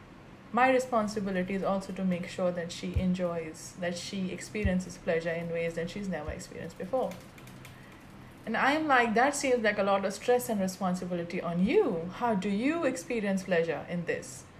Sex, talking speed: female, 175 wpm